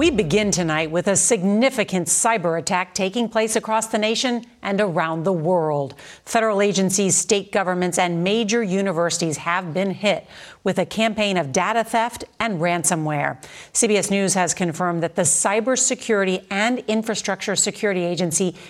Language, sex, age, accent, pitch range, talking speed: English, female, 50-69, American, 175-215 Hz, 150 wpm